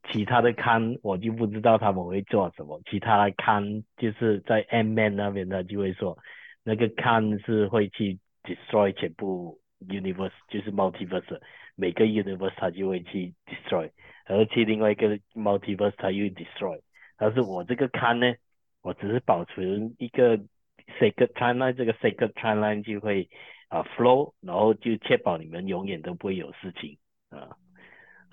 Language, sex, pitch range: Chinese, male, 95-115 Hz